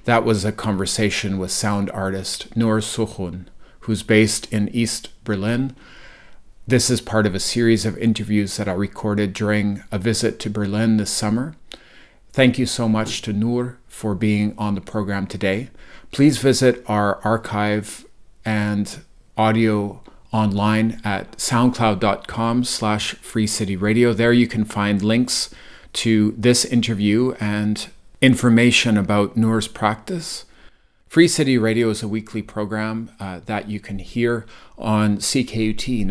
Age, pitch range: 40-59, 100-115 Hz